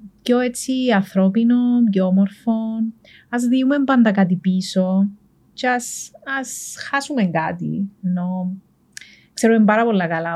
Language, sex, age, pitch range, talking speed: Greek, female, 30-49, 195-240 Hz, 115 wpm